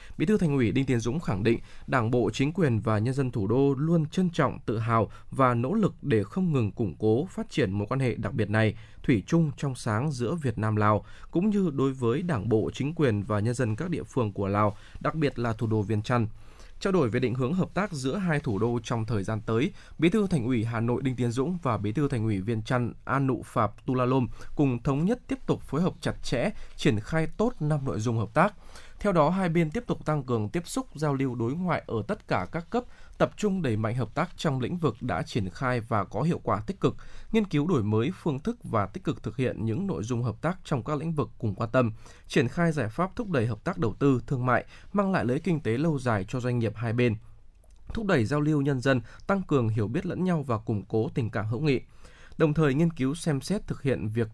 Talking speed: 255 wpm